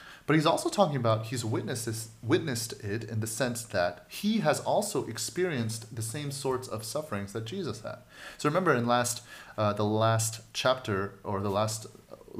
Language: English